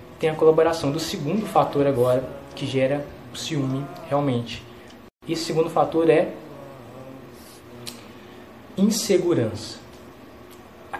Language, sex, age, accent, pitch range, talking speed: English, male, 20-39, Brazilian, 120-165 Hz, 105 wpm